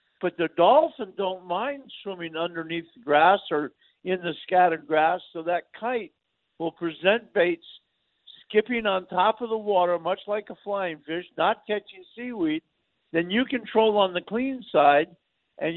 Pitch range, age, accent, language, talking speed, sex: 160-210 Hz, 50-69, American, English, 160 wpm, male